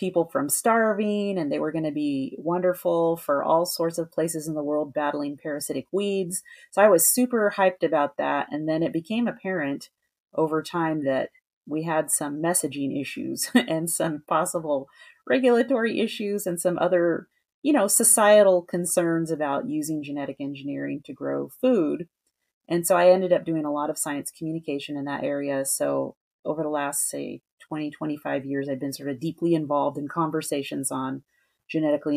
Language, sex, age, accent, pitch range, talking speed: English, female, 30-49, American, 145-190 Hz, 170 wpm